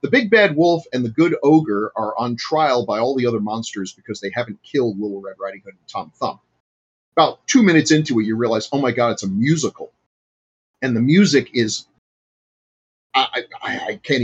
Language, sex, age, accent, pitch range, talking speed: English, male, 40-59, American, 105-145 Hz, 200 wpm